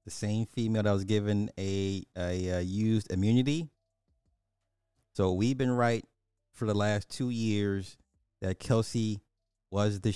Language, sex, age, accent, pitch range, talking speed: English, male, 30-49, American, 95-115 Hz, 150 wpm